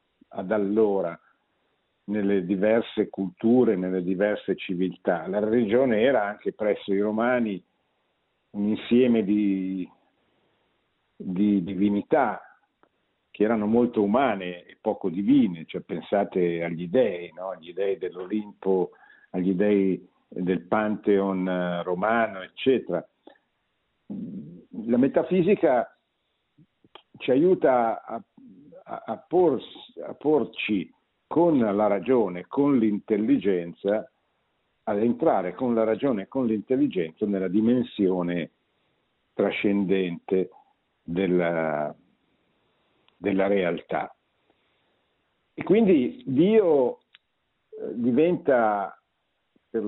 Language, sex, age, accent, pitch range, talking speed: Italian, male, 50-69, native, 95-120 Hz, 90 wpm